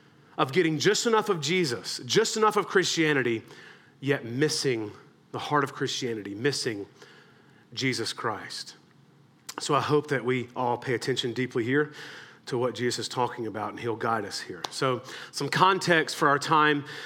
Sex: male